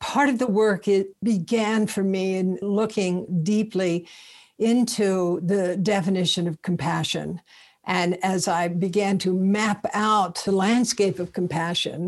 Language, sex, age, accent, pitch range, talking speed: English, female, 60-79, American, 175-210 Hz, 135 wpm